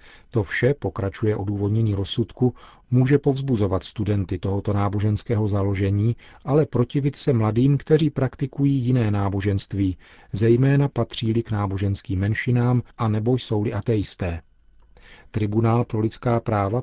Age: 40-59